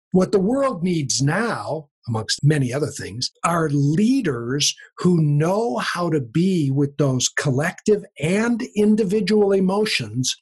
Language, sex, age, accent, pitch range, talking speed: English, male, 50-69, American, 145-195 Hz, 125 wpm